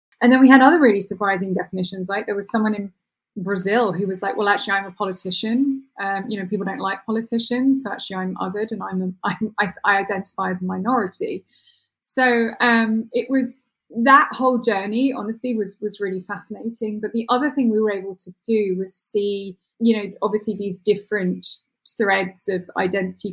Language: English